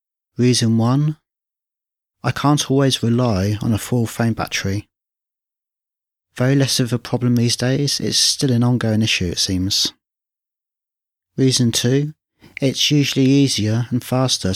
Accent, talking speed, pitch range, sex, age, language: British, 130 wpm, 105-125 Hz, male, 30-49, English